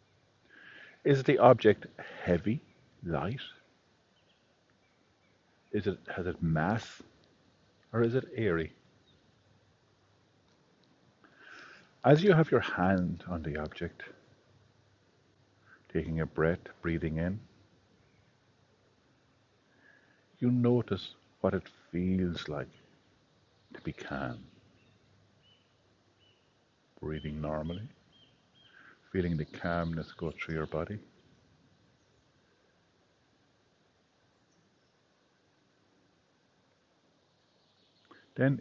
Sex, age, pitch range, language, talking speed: male, 50-69, 85-115 Hz, English, 70 wpm